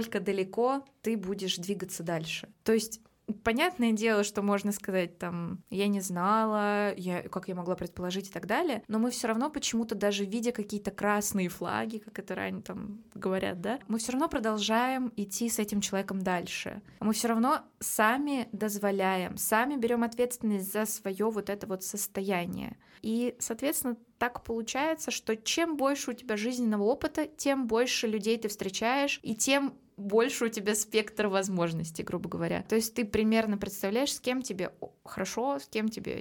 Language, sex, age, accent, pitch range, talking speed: Russian, female, 20-39, native, 190-230 Hz, 165 wpm